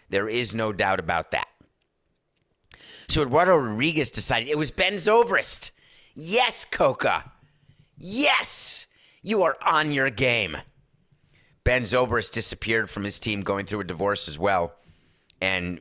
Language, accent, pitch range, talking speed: English, American, 100-130 Hz, 135 wpm